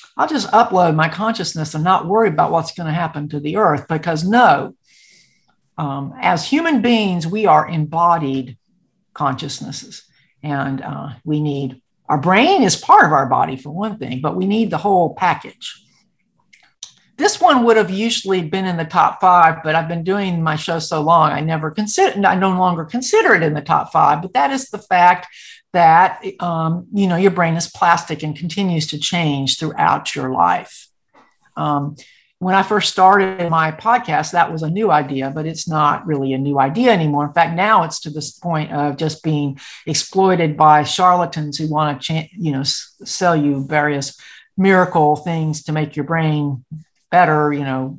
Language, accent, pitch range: English, American, 150-185 Hz